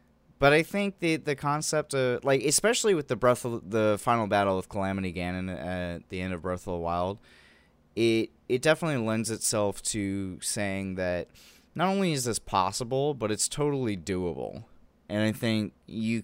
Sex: male